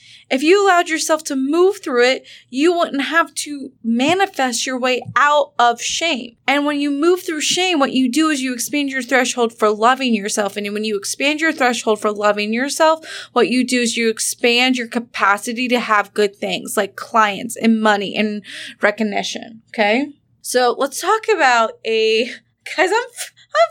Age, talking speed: 20-39, 180 wpm